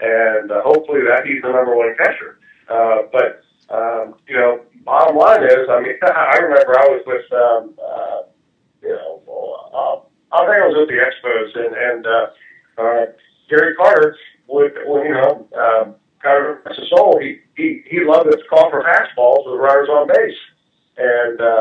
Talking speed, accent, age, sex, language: 185 wpm, American, 40-59, male, English